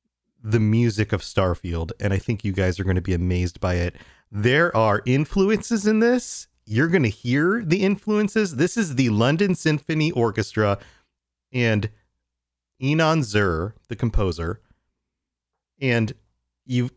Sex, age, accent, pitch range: male, 30-49, American, 95-125 Hz